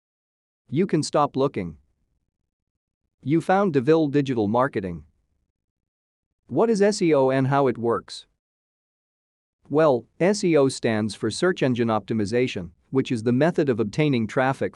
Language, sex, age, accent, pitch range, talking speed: English, male, 40-59, American, 105-145 Hz, 120 wpm